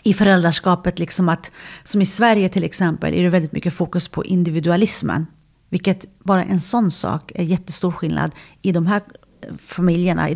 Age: 40-59